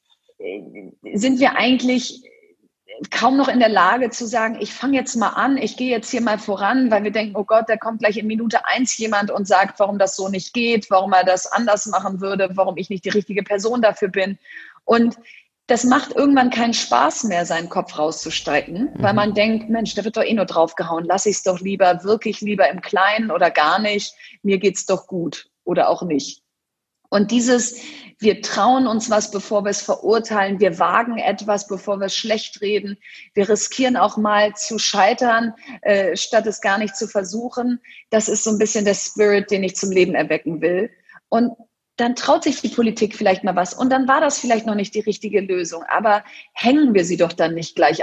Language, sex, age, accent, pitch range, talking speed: German, female, 30-49, German, 195-235 Hz, 205 wpm